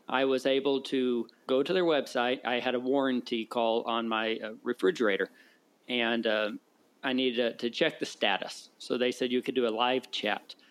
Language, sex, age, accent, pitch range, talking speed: English, male, 40-59, American, 120-140 Hz, 185 wpm